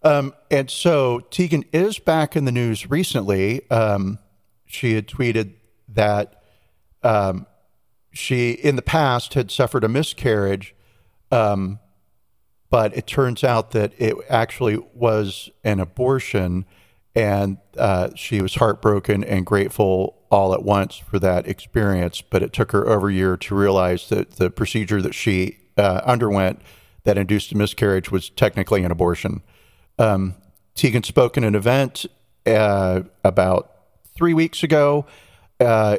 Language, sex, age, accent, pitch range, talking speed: English, male, 40-59, American, 95-120 Hz, 140 wpm